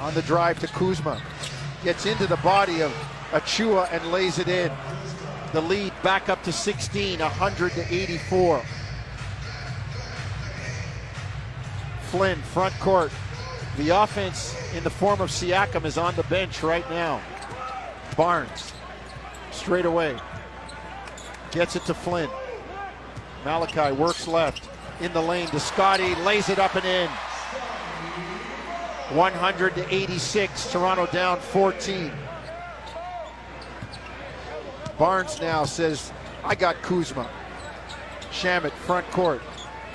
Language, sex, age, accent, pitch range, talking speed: English, male, 50-69, American, 155-195 Hz, 105 wpm